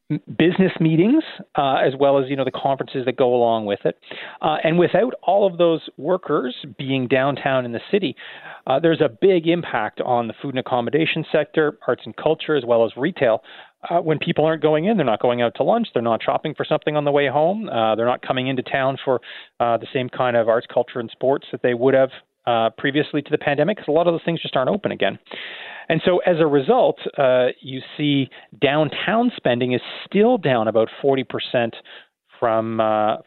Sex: male